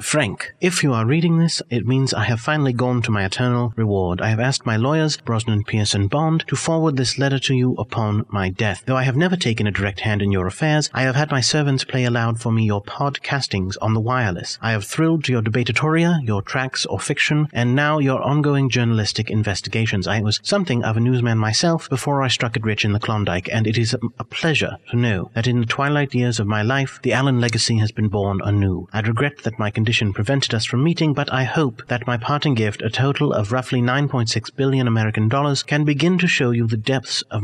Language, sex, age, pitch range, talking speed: English, male, 30-49, 110-140 Hz, 230 wpm